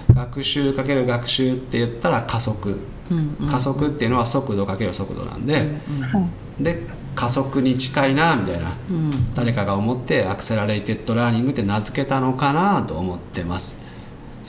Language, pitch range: Japanese, 110-140 Hz